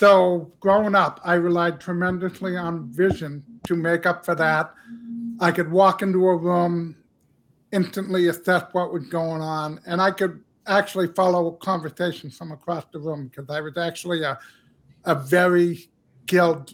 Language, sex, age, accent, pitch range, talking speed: English, male, 50-69, American, 165-185 Hz, 155 wpm